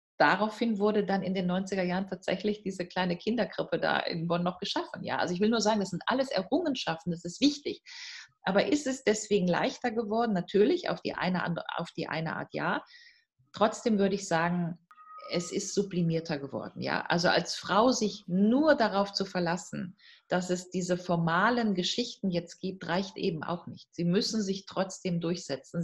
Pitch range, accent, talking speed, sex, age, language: 175-215 Hz, German, 175 wpm, female, 40-59, German